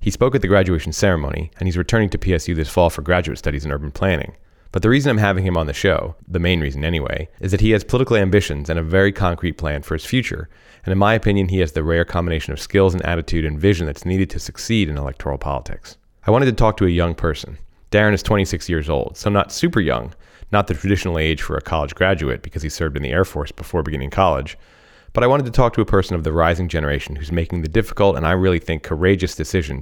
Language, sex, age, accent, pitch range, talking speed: English, male, 30-49, American, 80-95 Hz, 250 wpm